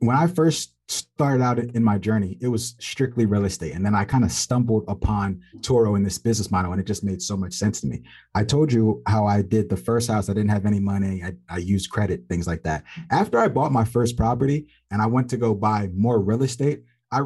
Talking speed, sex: 245 wpm, male